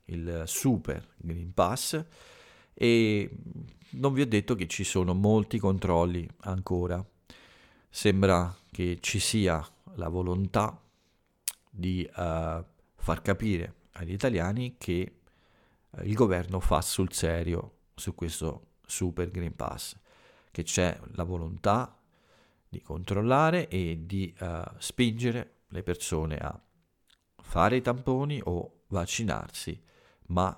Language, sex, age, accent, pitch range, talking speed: Italian, male, 50-69, native, 85-100 Hz, 110 wpm